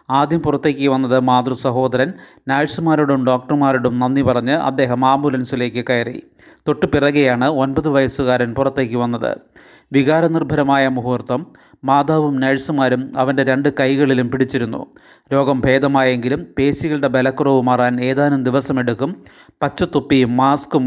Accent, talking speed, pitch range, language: native, 95 wpm, 125-140 Hz, Malayalam